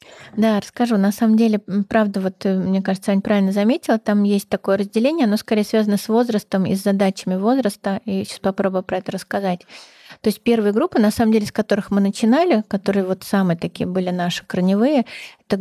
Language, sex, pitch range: Russian, female, 195-225 Hz